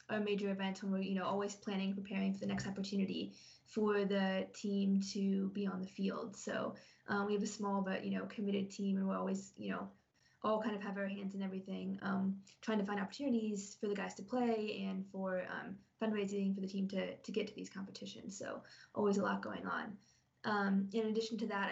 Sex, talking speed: female, 220 wpm